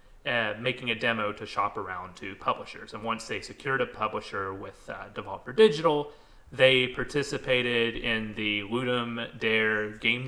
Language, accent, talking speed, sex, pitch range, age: English, American, 150 wpm, male, 105-125 Hz, 30-49